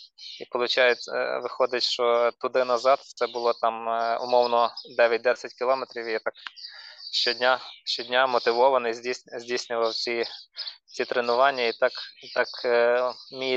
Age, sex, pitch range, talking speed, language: 20-39, male, 115-125 Hz, 105 wpm, Ukrainian